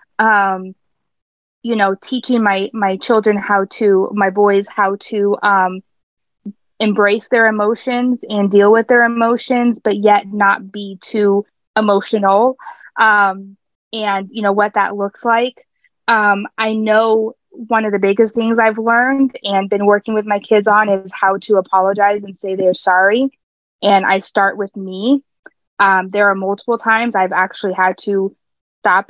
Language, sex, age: English, female, 20-39